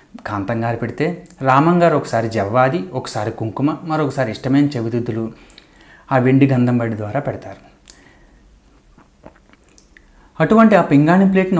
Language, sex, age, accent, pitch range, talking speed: Telugu, male, 30-49, native, 115-145 Hz, 100 wpm